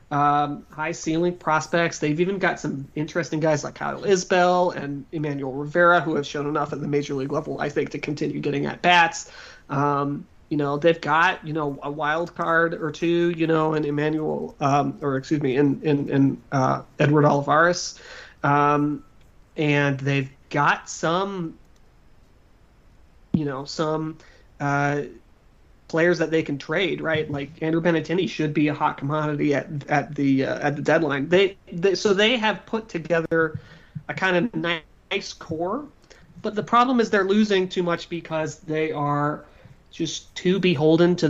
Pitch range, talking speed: 145-175 Hz, 170 wpm